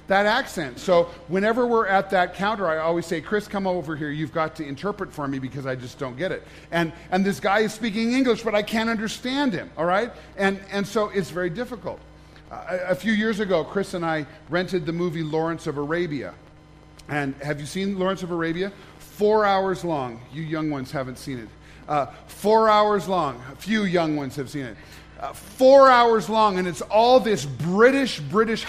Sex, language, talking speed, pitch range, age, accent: male, English, 205 wpm, 155-215 Hz, 40-59, American